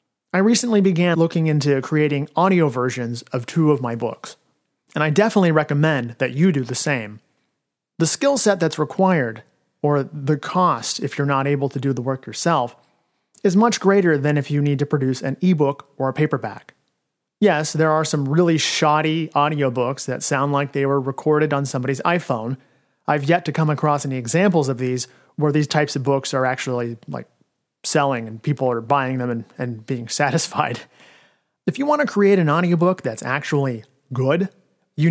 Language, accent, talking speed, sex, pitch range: English, American, 185 wpm, male, 135-175 Hz